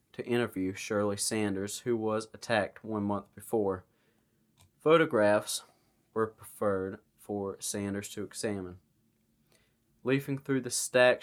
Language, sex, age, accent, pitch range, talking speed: English, male, 20-39, American, 100-120 Hz, 110 wpm